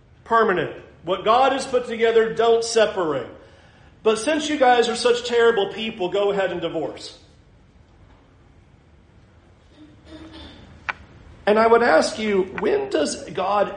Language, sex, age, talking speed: English, male, 40-59, 120 wpm